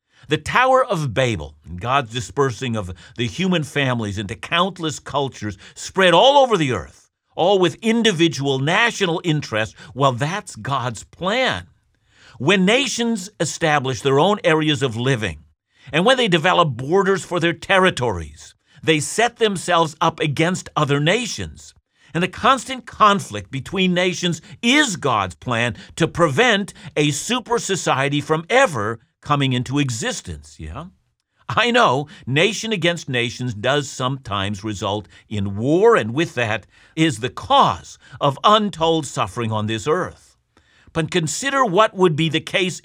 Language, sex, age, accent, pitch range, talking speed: English, male, 50-69, American, 125-185 Hz, 140 wpm